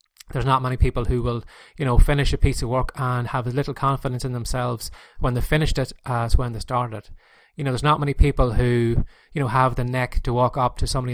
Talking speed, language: 245 wpm, English